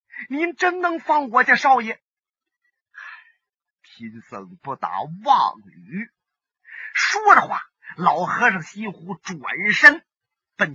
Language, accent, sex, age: Chinese, native, male, 30-49